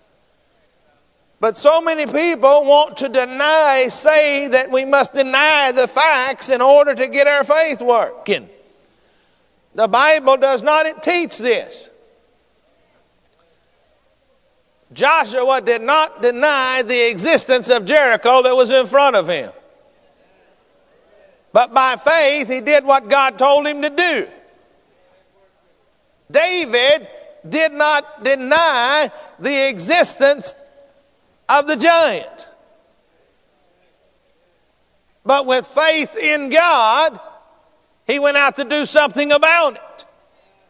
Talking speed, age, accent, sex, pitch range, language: 110 wpm, 50-69, American, male, 270-310 Hz, English